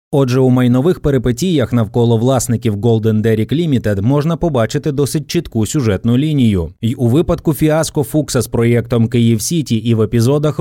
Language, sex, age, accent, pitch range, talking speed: Ukrainian, male, 20-39, native, 110-145 Hz, 155 wpm